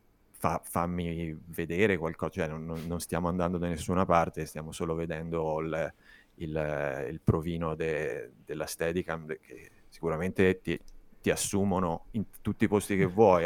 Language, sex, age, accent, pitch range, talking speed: Italian, male, 30-49, native, 85-95 Hz, 145 wpm